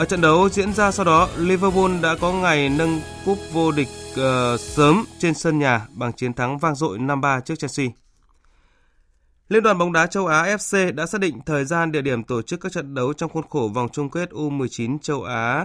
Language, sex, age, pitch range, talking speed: Vietnamese, male, 20-39, 125-160 Hz, 215 wpm